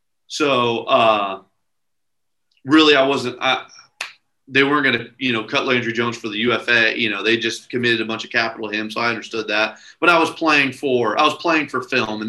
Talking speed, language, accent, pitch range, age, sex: 220 wpm, English, American, 120-140 Hz, 30-49, male